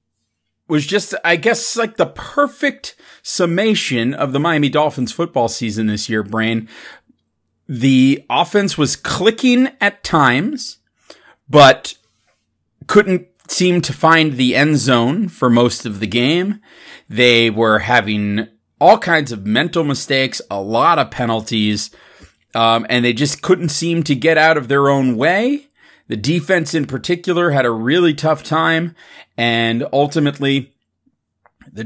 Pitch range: 115-165 Hz